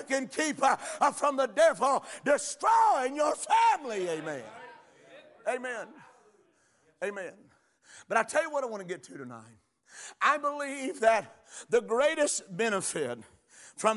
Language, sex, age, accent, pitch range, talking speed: English, male, 50-69, American, 210-285 Hz, 125 wpm